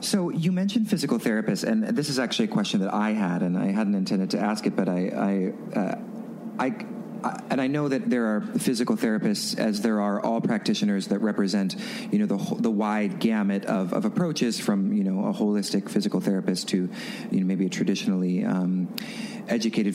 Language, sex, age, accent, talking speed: English, male, 40-59, American, 200 wpm